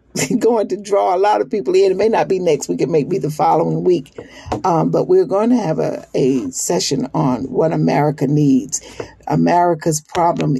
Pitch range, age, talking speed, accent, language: 145-200 Hz, 40-59, 200 wpm, American, English